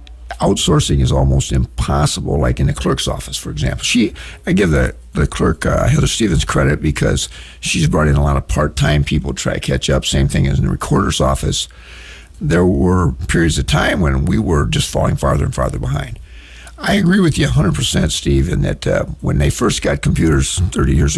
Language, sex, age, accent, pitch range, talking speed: English, male, 60-79, American, 65-80 Hz, 205 wpm